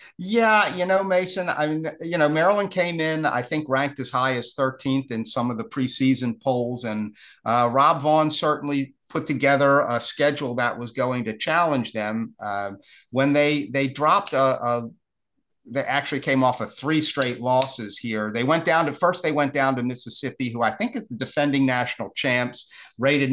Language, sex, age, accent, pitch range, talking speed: English, male, 50-69, American, 120-145 Hz, 185 wpm